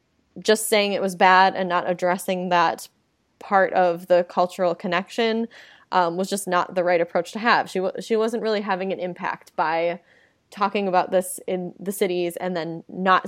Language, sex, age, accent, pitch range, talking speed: English, female, 20-39, American, 175-200 Hz, 185 wpm